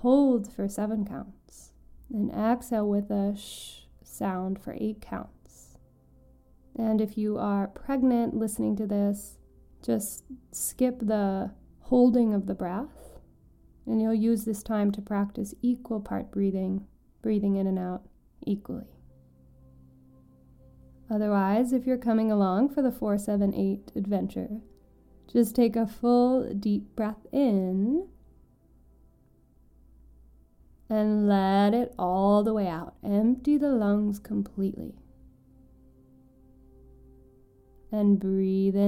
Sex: female